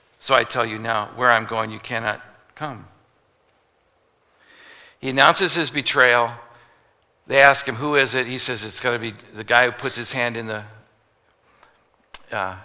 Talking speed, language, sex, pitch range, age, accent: 170 wpm, English, male, 110-135 Hz, 60-79, American